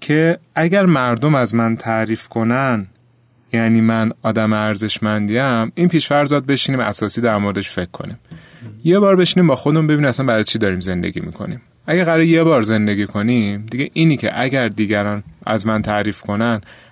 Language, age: Persian, 30-49